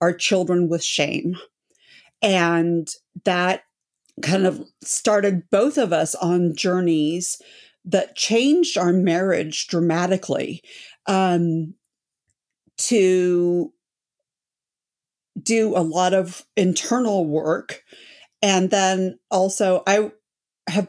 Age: 50-69